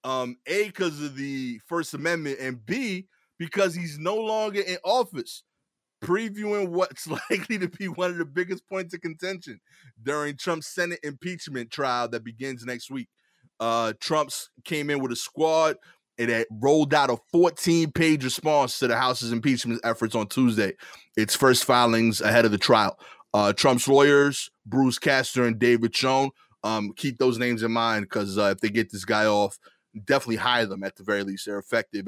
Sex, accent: male, American